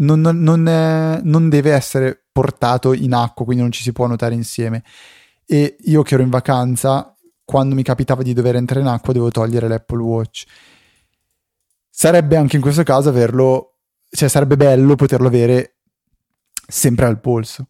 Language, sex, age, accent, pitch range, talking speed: Italian, male, 20-39, native, 120-145 Hz, 165 wpm